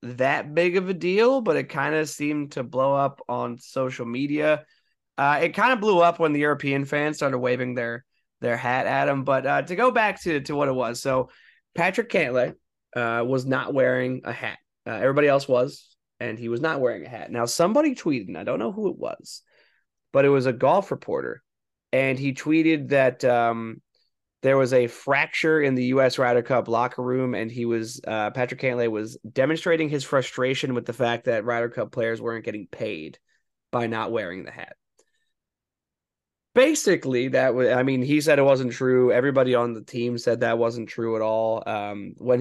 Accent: American